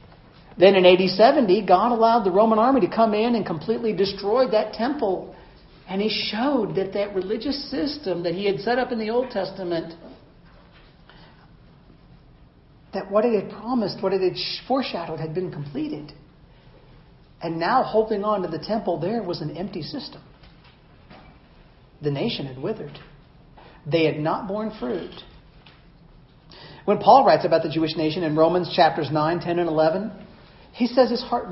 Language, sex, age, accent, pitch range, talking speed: English, male, 50-69, American, 165-220 Hz, 160 wpm